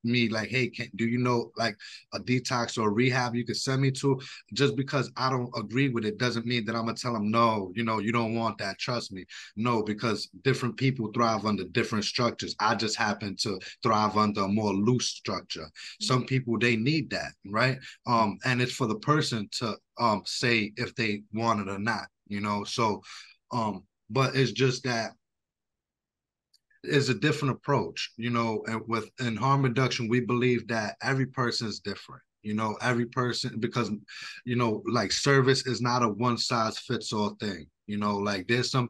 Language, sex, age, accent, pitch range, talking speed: English, male, 20-39, American, 110-125 Hz, 195 wpm